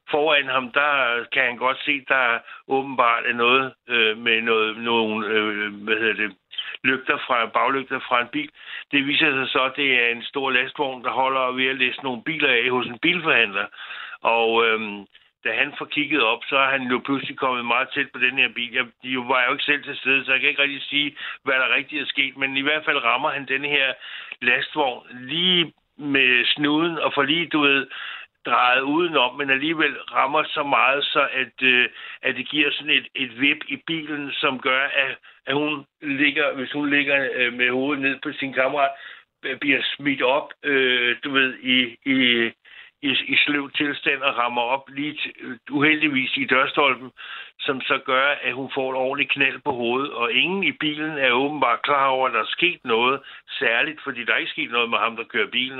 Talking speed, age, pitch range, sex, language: 205 wpm, 60-79, 125-145 Hz, male, Danish